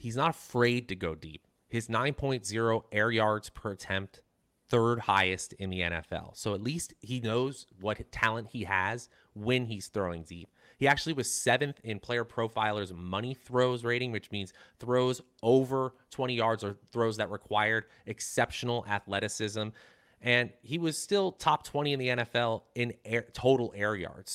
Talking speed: 160 wpm